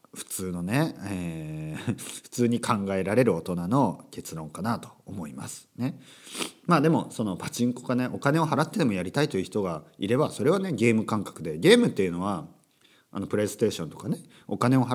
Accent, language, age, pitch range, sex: native, Japanese, 40-59, 90-130 Hz, male